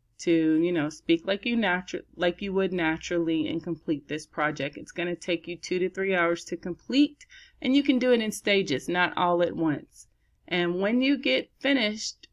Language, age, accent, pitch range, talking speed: English, 30-49, American, 165-195 Hz, 205 wpm